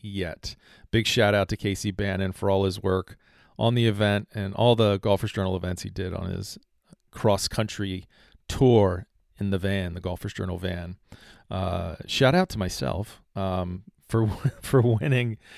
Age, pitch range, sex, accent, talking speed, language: 40-59, 95-115 Hz, male, American, 165 wpm, English